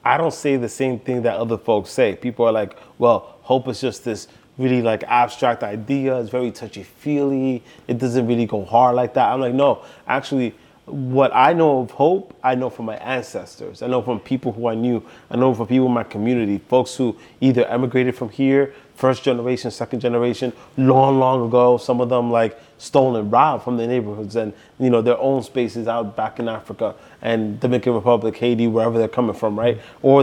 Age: 20-39